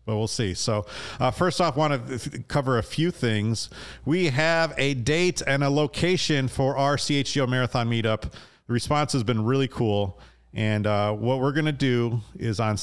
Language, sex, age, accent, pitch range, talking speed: English, male, 40-59, American, 100-130 Hz, 195 wpm